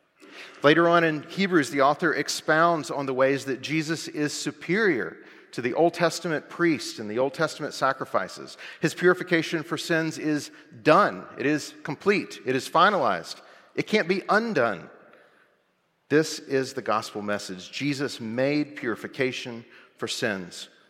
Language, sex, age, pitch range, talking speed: English, male, 40-59, 135-170 Hz, 145 wpm